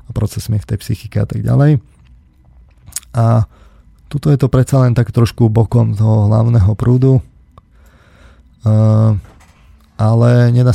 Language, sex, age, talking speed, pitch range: Slovak, male, 30-49, 125 wpm, 105-115 Hz